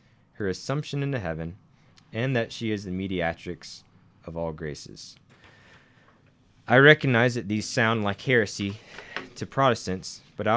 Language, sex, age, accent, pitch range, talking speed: English, male, 20-39, American, 90-120 Hz, 135 wpm